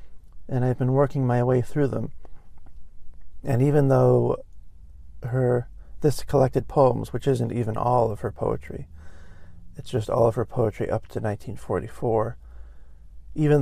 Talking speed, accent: 140 wpm, American